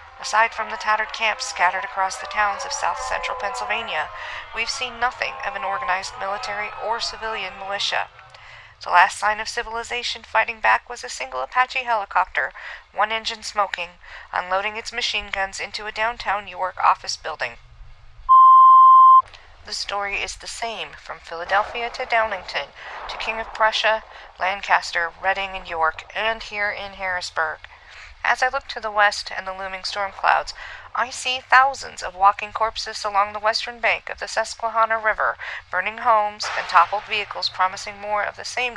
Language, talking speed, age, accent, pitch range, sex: English, 160 wpm, 50-69, American, 200-245 Hz, female